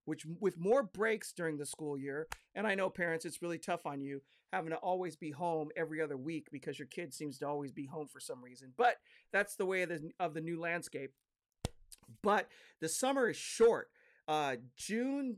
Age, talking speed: 40-59, 205 wpm